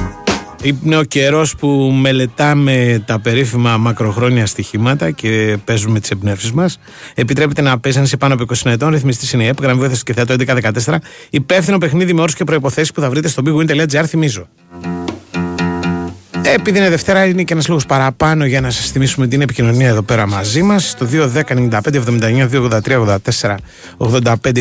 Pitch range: 110-145 Hz